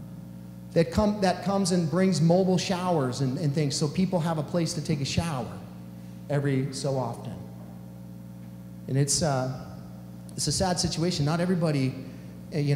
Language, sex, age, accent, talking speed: English, male, 30-49, American, 155 wpm